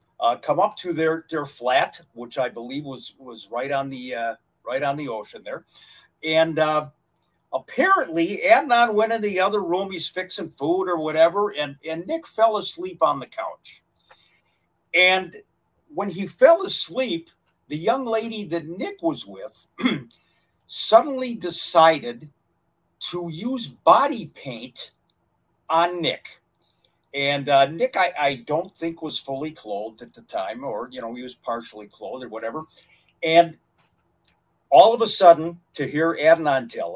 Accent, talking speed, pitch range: American, 155 wpm, 135-205 Hz